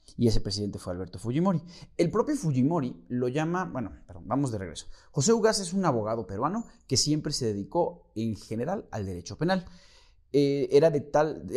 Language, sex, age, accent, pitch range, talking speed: Spanish, male, 30-49, Mexican, 110-155 Hz, 165 wpm